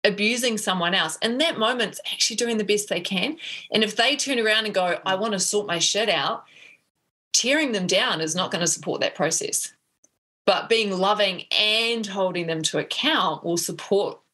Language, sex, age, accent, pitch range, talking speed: English, female, 30-49, Australian, 190-280 Hz, 195 wpm